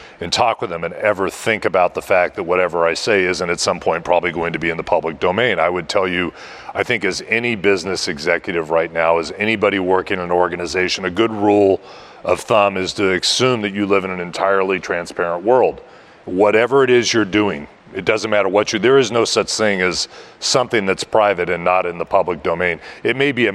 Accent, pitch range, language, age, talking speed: American, 90-120 Hz, English, 40-59, 225 wpm